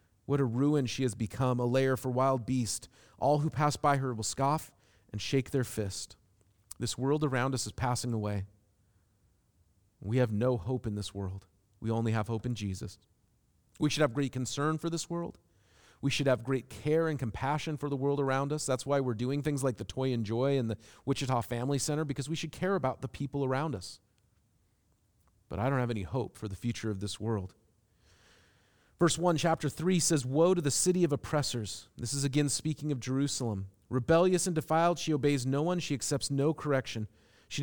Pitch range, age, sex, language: 110-155 Hz, 40-59, male, English